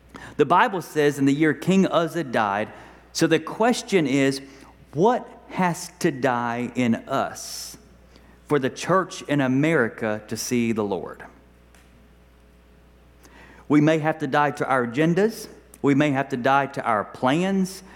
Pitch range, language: 125-180 Hz, English